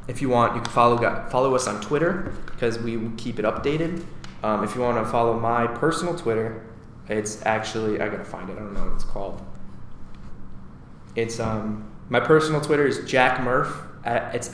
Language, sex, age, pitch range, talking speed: English, male, 20-39, 110-125 Hz, 190 wpm